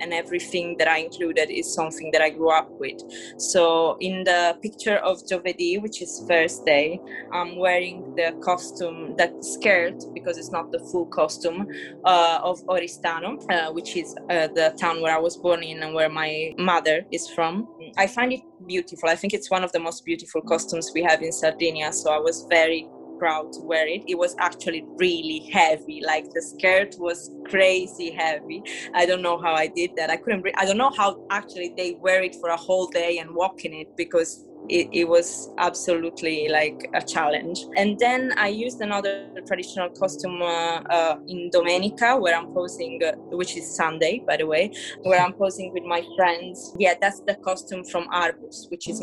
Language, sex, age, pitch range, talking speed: English, female, 20-39, 165-185 Hz, 195 wpm